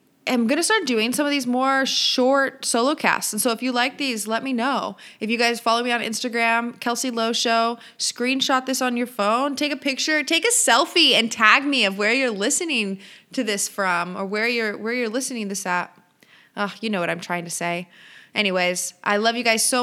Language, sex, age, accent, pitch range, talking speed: English, female, 20-39, American, 205-245 Hz, 220 wpm